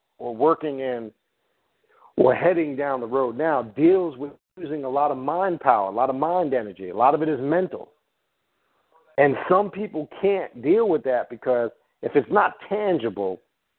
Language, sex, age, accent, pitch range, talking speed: English, male, 50-69, American, 130-180 Hz, 175 wpm